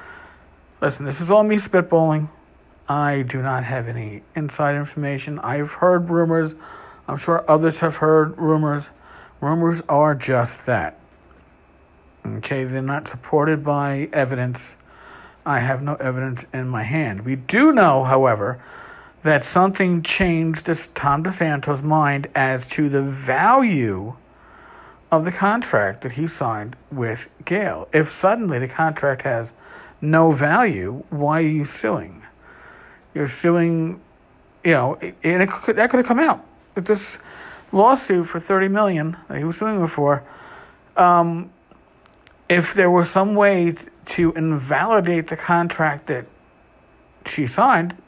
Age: 50-69